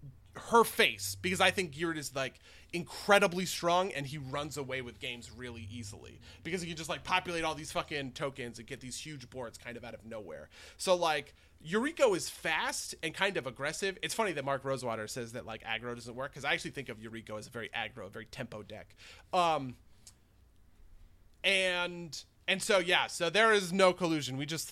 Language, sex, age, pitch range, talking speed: English, male, 30-49, 115-175 Hz, 200 wpm